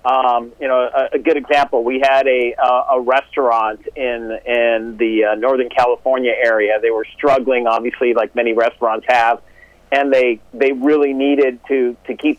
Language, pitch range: English, 130-160 Hz